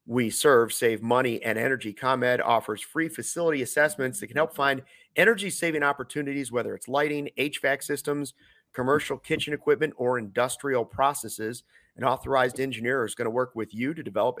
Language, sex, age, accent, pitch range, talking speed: English, male, 40-59, American, 125-155 Hz, 165 wpm